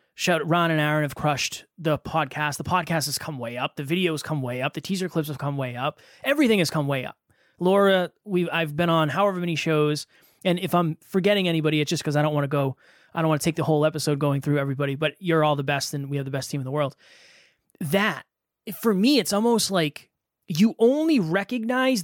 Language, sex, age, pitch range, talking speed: English, male, 20-39, 150-200 Hz, 235 wpm